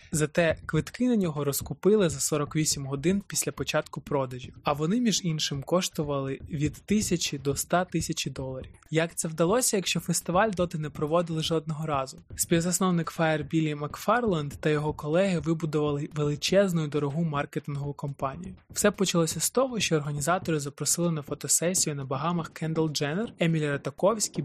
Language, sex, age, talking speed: Ukrainian, male, 20-39, 145 wpm